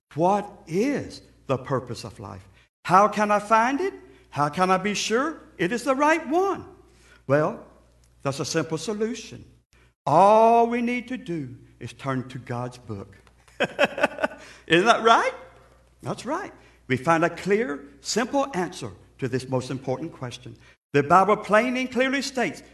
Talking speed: 150 wpm